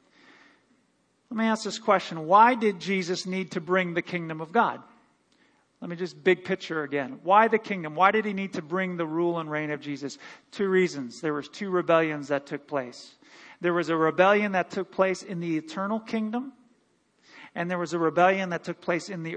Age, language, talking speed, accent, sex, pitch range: 40-59, English, 205 wpm, American, male, 175-230 Hz